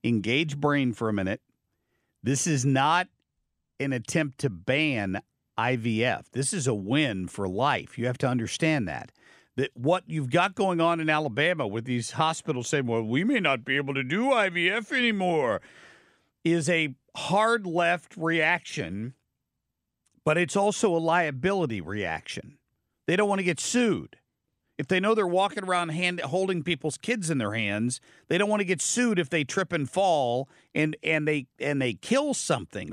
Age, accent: 50-69, American